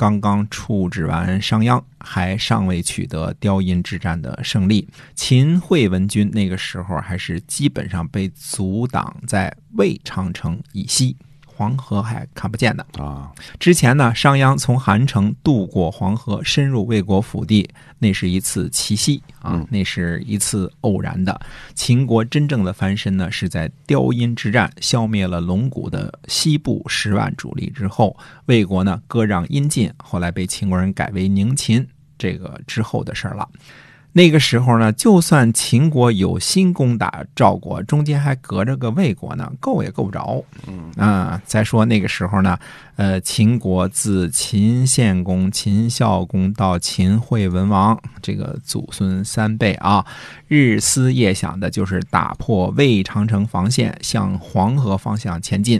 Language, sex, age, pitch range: Chinese, male, 50-69, 95-130 Hz